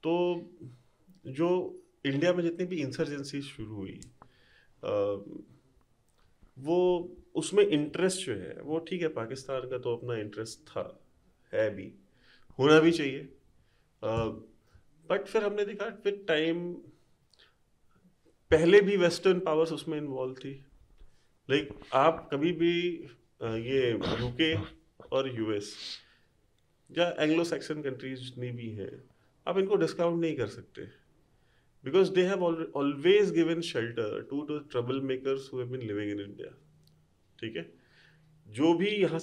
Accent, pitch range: native, 120-170 Hz